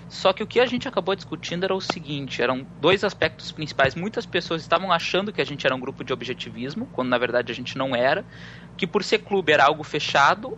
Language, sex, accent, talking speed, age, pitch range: English, male, Brazilian, 235 wpm, 20-39, 135-180 Hz